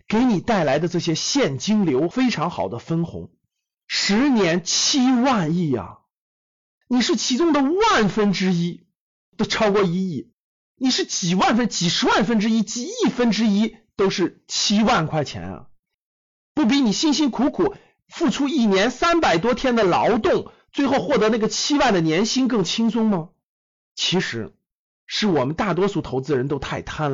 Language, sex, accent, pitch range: Chinese, male, native, 175-255 Hz